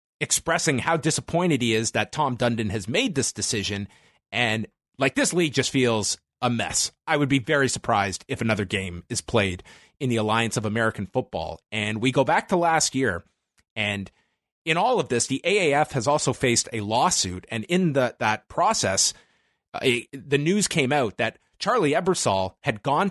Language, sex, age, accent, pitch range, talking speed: English, male, 30-49, American, 115-155 Hz, 180 wpm